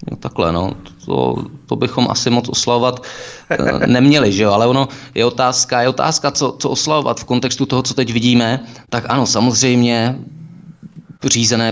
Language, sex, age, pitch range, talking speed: Czech, male, 20-39, 105-125 Hz, 155 wpm